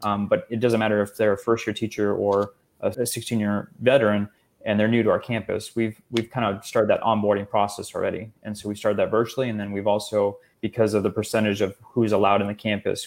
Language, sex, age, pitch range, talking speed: English, male, 20-39, 100-110 Hz, 240 wpm